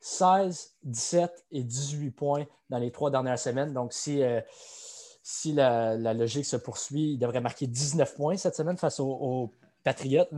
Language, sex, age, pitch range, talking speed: French, male, 20-39, 130-175 Hz, 175 wpm